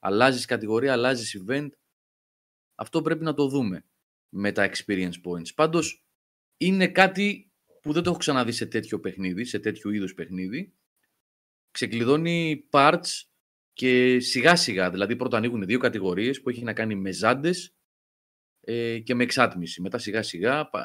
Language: Greek